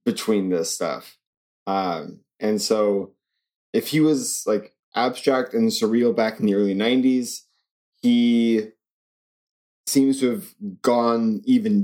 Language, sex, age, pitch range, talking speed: English, male, 20-39, 110-145 Hz, 120 wpm